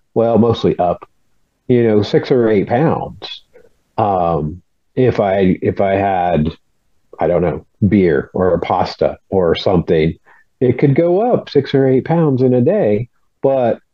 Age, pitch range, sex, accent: 40-59, 105-130 Hz, male, American